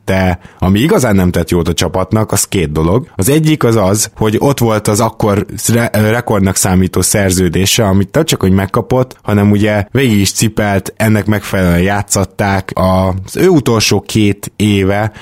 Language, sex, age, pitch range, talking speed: Hungarian, male, 20-39, 95-110 Hz, 160 wpm